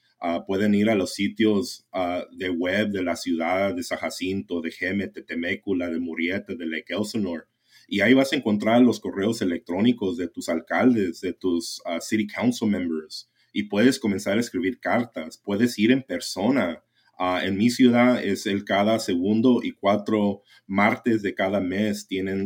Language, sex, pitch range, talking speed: English, male, 95-110 Hz, 175 wpm